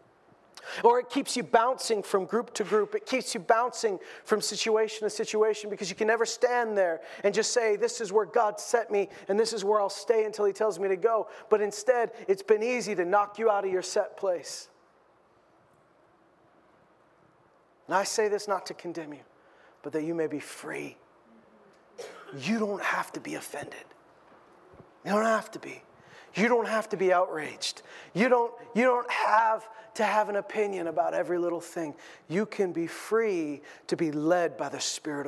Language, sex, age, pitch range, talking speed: English, male, 40-59, 180-225 Hz, 185 wpm